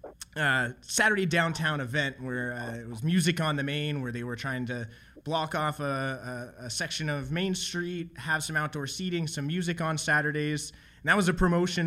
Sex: male